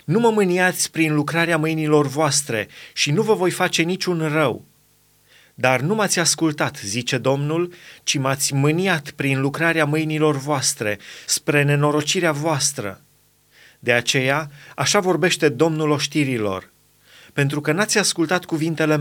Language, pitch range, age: Romanian, 145-175 Hz, 30-49